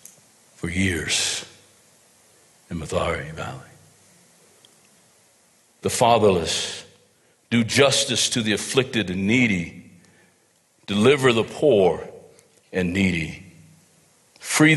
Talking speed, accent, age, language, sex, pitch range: 80 wpm, American, 60-79, English, male, 90-115 Hz